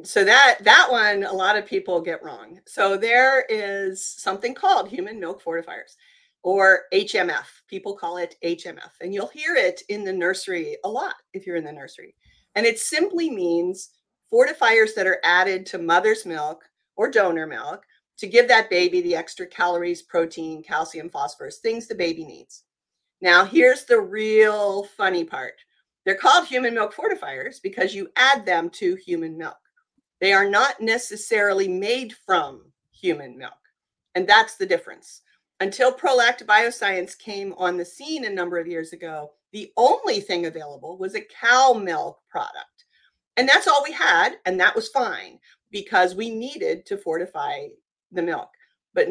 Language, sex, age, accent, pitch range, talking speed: English, female, 40-59, American, 175-250 Hz, 165 wpm